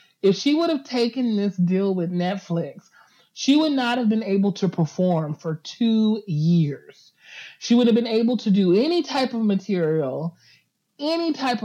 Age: 30-49